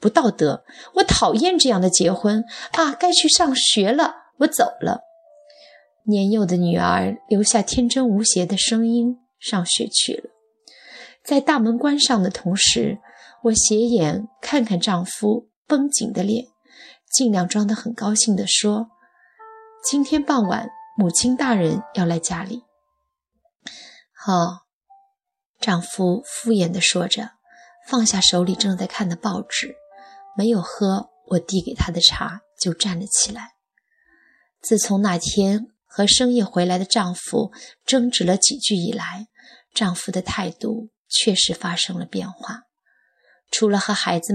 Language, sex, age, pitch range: Chinese, female, 20-39, 185-245 Hz